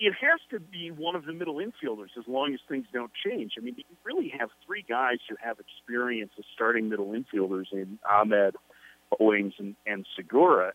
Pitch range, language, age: 115-175 Hz, English, 40-59